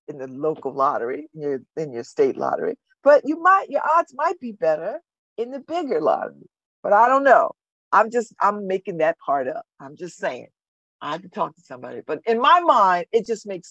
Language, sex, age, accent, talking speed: English, female, 50-69, American, 215 wpm